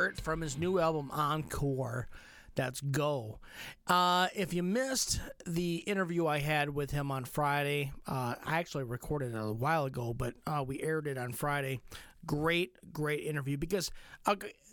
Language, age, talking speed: English, 40-59, 160 wpm